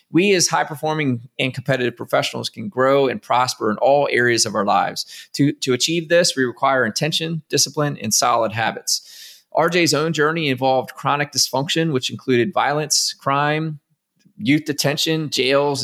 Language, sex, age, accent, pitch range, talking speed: English, male, 20-39, American, 125-155 Hz, 150 wpm